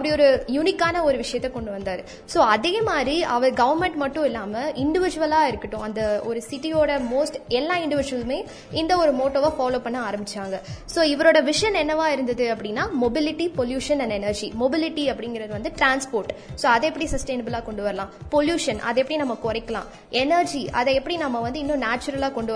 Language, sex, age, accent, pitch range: Tamil, female, 20-39, native, 235-315 Hz